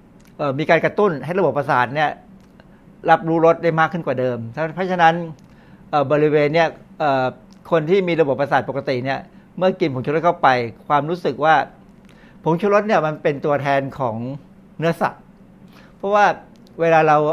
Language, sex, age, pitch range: Thai, male, 60-79, 135-180 Hz